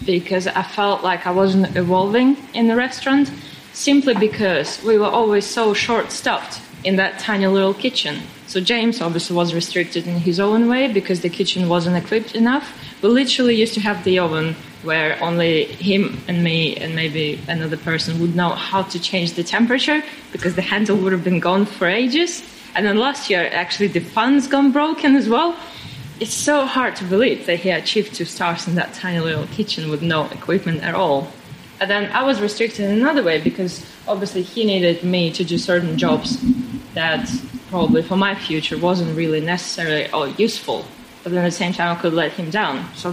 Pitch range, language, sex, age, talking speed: 165-215 Hz, English, female, 20-39, 195 wpm